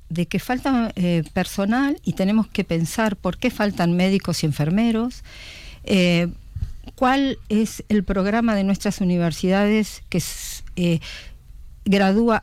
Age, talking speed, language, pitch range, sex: 50-69, 125 wpm, Spanish, 160-215 Hz, female